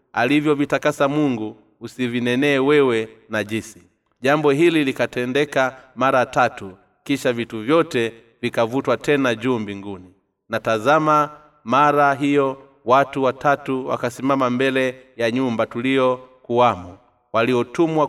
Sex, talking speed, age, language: male, 100 wpm, 30-49, Swahili